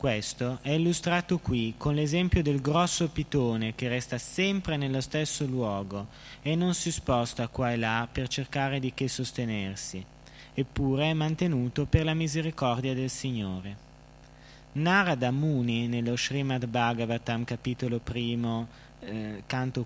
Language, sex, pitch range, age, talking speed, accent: Italian, male, 125-150 Hz, 20-39, 135 wpm, native